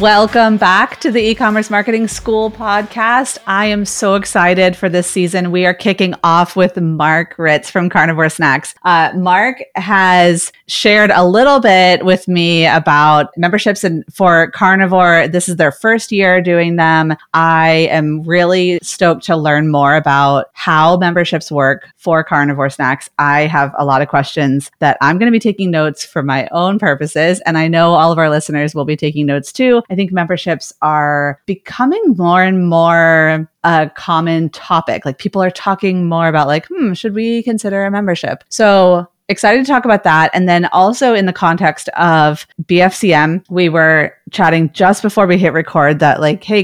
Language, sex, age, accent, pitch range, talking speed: English, female, 30-49, American, 160-195 Hz, 175 wpm